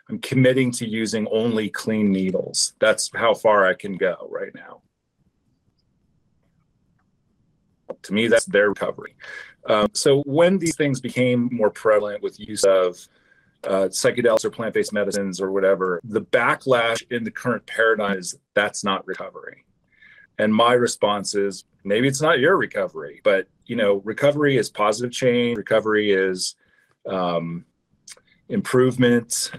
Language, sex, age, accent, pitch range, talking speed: English, male, 30-49, American, 100-125 Hz, 140 wpm